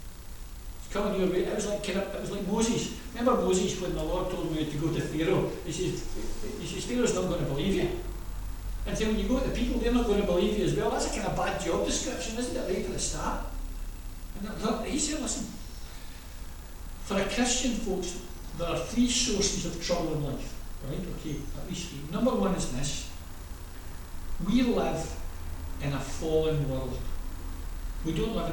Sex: male